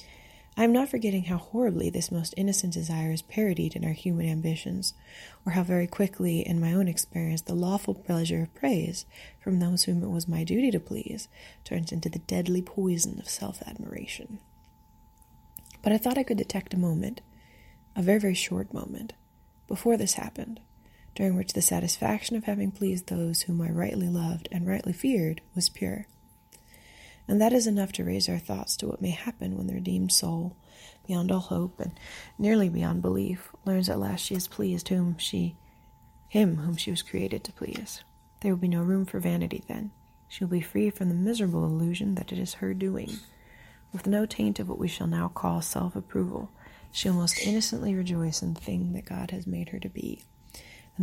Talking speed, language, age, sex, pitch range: 190 wpm, English, 20-39, female, 165-195 Hz